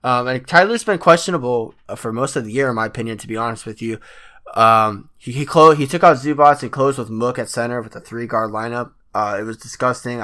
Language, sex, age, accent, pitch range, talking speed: English, male, 20-39, American, 115-135 Hz, 240 wpm